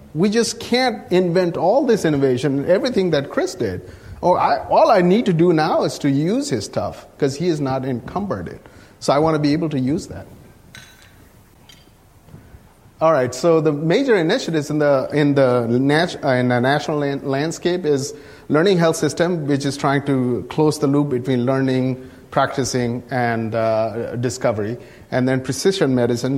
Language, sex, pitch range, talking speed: English, male, 115-145 Hz, 175 wpm